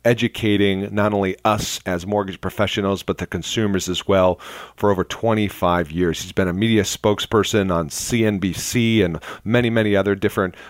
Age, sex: 40-59, male